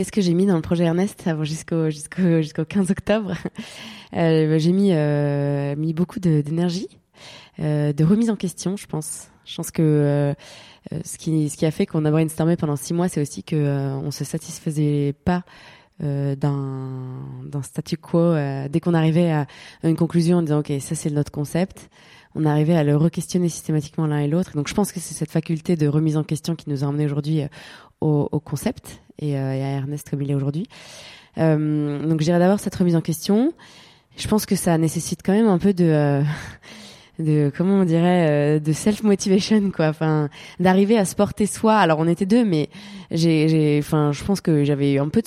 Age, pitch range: 20-39, 150-180 Hz